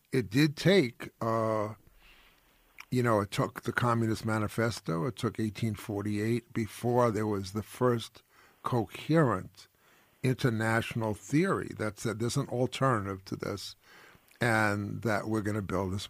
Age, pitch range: 50-69, 105-120 Hz